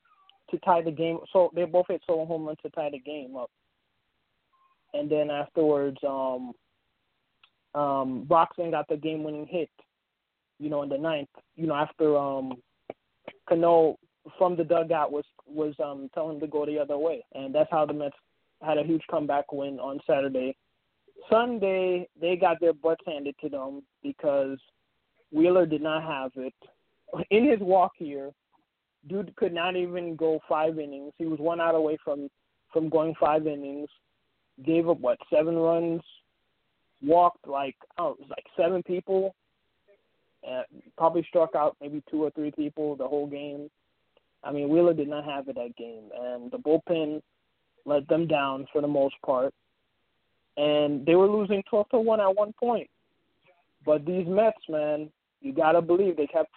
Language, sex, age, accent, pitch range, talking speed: English, male, 20-39, American, 145-175 Hz, 170 wpm